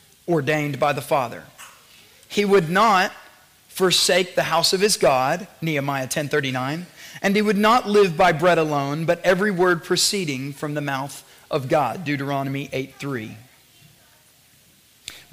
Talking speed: 135 wpm